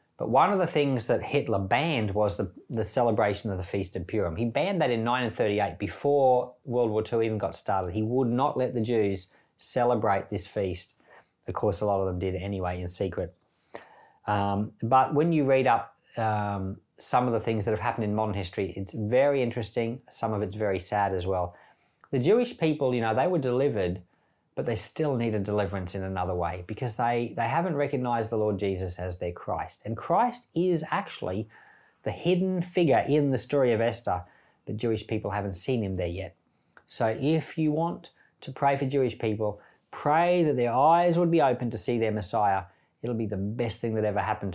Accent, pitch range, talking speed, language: Australian, 100-130 Hz, 205 wpm, English